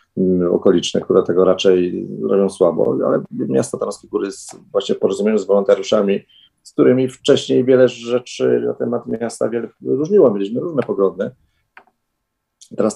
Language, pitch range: Polish, 90-120 Hz